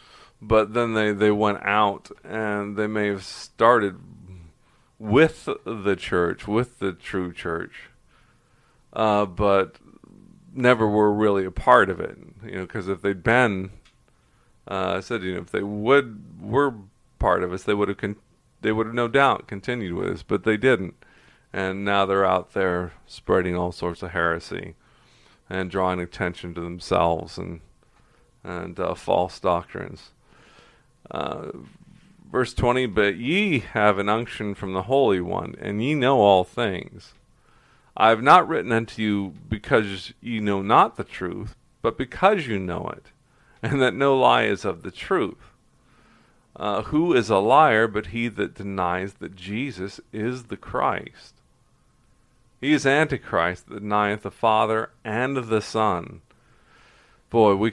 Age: 40-59